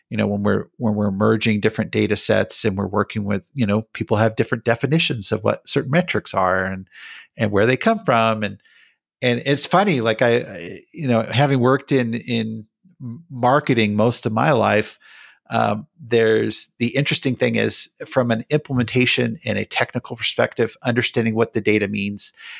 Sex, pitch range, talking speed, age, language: male, 110-145 Hz, 180 wpm, 50-69, English